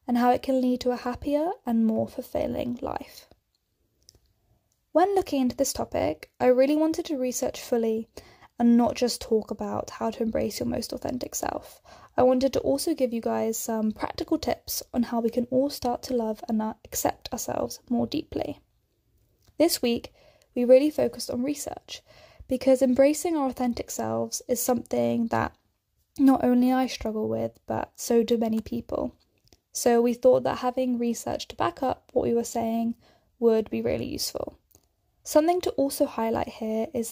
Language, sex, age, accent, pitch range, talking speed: English, female, 10-29, British, 230-270 Hz, 170 wpm